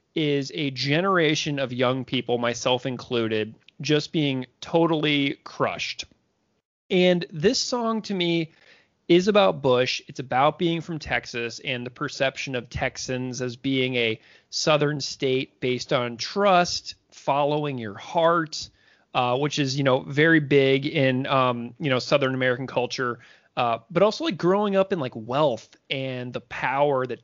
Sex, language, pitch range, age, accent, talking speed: male, English, 125-155 Hz, 30-49, American, 150 wpm